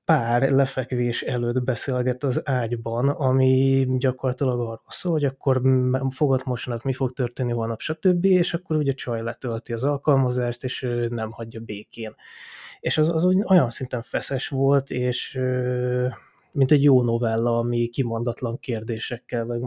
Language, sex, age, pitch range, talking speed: Hungarian, male, 20-39, 115-135 Hz, 140 wpm